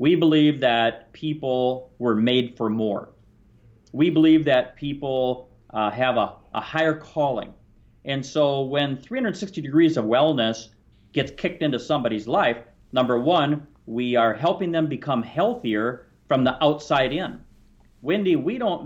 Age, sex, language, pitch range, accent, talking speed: 40-59, male, English, 115-155 Hz, American, 145 wpm